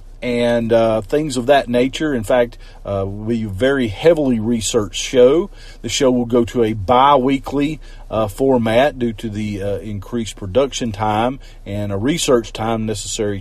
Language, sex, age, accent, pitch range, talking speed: English, male, 40-59, American, 110-135 Hz, 150 wpm